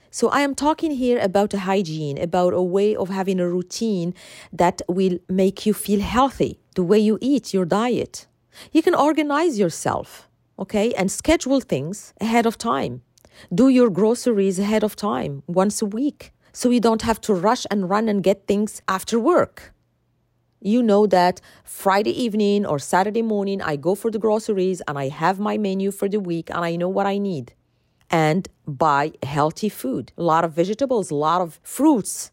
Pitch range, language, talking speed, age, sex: 190-260 Hz, English, 180 wpm, 40-59, female